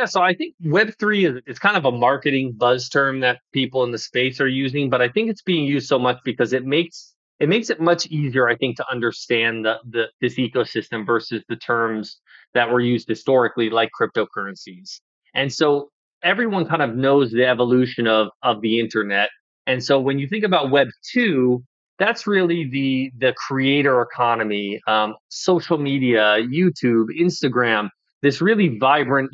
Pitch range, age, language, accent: 120-160 Hz, 30-49, English, American